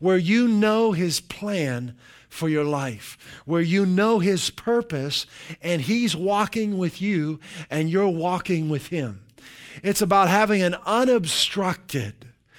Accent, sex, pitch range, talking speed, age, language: American, male, 145-210 Hz, 135 wpm, 50-69, English